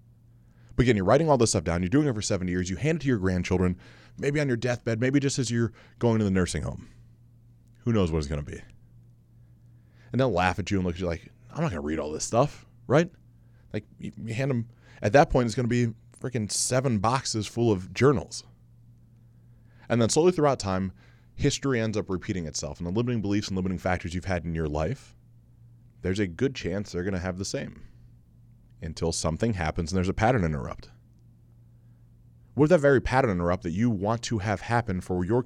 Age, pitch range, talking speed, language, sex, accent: 20-39, 95-120 Hz, 215 wpm, English, male, American